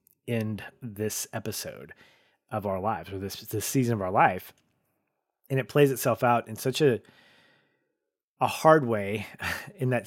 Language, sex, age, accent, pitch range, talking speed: English, male, 30-49, American, 100-125 Hz, 155 wpm